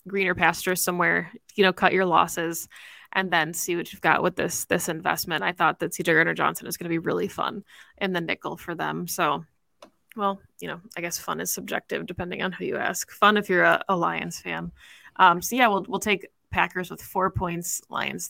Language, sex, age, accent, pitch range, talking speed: English, female, 20-39, American, 170-200 Hz, 215 wpm